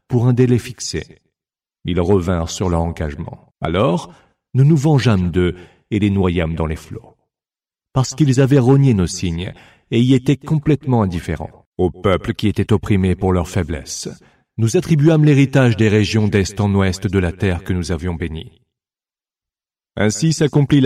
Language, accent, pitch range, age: English, French, 90-130 Hz, 40-59